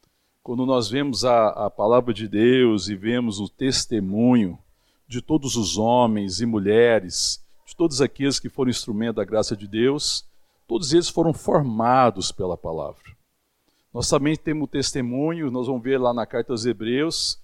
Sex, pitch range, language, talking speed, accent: male, 120-145 Hz, Portuguese, 160 wpm, Brazilian